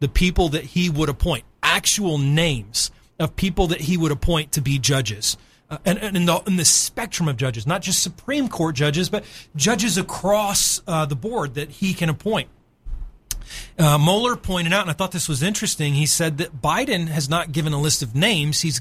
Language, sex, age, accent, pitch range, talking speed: English, male, 30-49, American, 145-190 Hz, 200 wpm